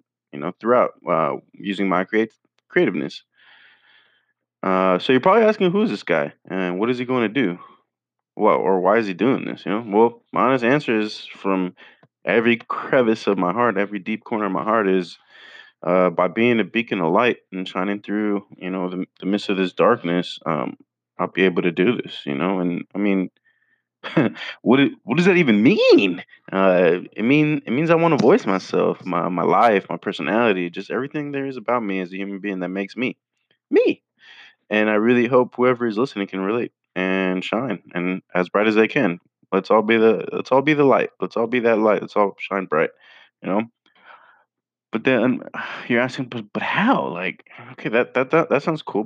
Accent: American